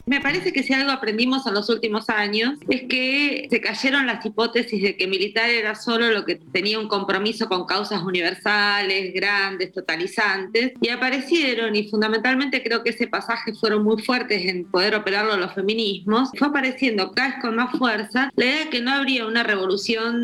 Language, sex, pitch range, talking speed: Spanish, female, 200-245 Hz, 185 wpm